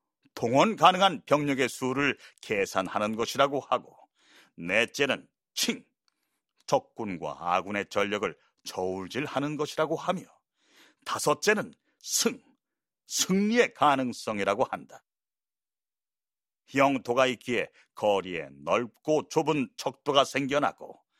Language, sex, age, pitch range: Korean, male, 40-59, 125-160 Hz